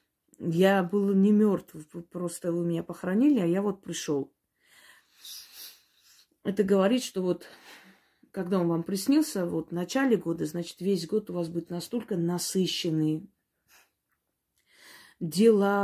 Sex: female